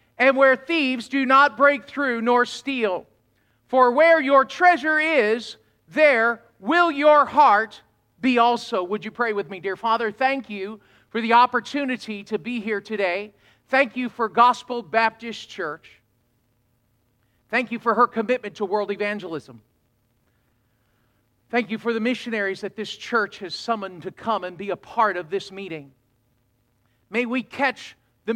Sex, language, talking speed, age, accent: male, English, 155 wpm, 50-69, American